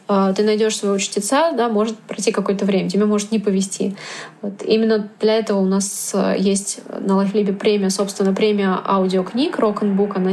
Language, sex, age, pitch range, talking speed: Russian, female, 20-39, 195-220 Hz, 165 wpm